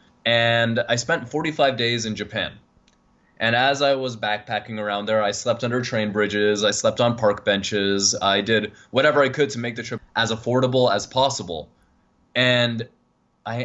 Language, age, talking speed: English, 20-39, 170 wpm